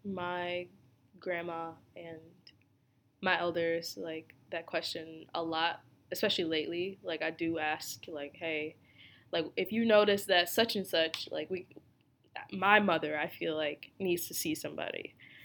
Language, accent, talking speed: English, American, 145 wpm